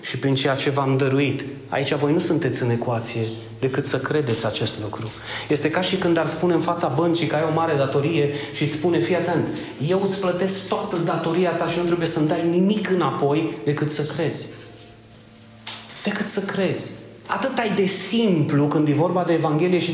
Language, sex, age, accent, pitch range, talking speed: Romanian, male, 30-49, native, 130-185 Hz, 195 wpm